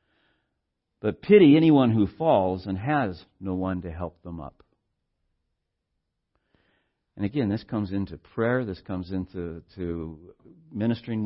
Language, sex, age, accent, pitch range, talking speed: English, male, 60-79, American, 105-155 Hz, 130 wpm